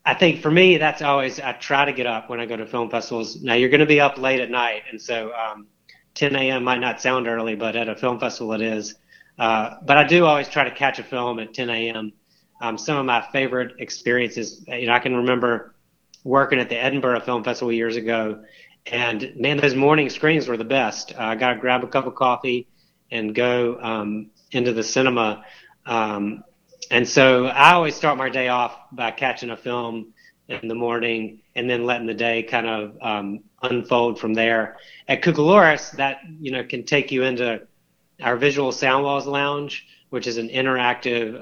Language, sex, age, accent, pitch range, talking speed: English, male, 30-49, American, 115-135 Hz, 200 wpm